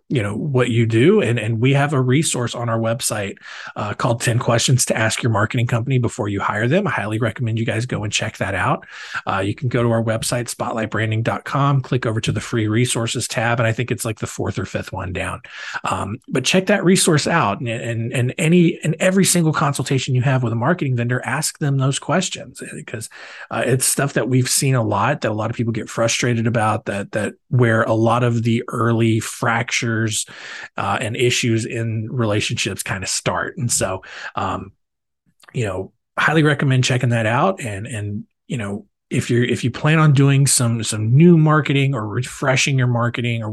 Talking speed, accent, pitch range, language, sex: 210 wpm, American, 110-135 Hz, English, male